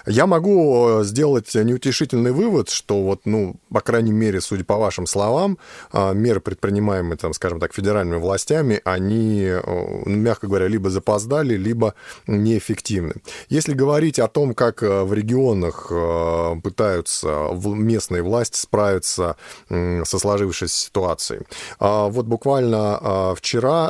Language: Russian